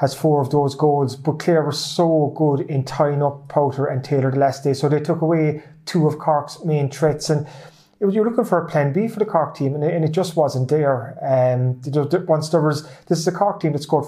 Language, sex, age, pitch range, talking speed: English, male, 30-49, 145-165 Hz, 265 wpm